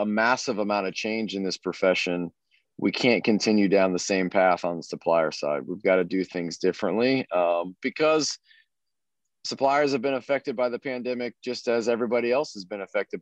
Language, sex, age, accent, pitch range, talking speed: English, male, 40-59, American, 100-120 Hz, 185 wpm